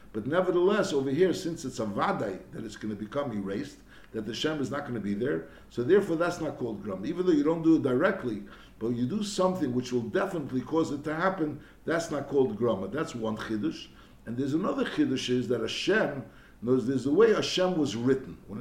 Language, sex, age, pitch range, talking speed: English, male, 60-79, 125-180 Hz, 230 wpm